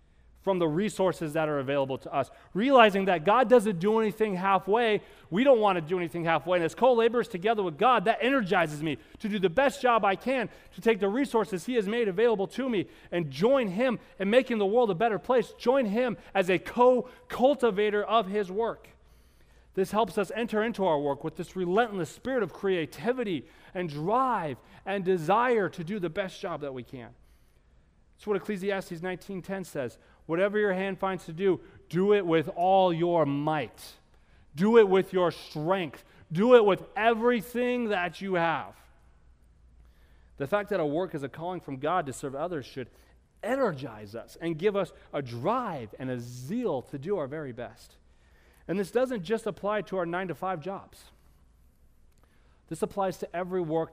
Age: 30-49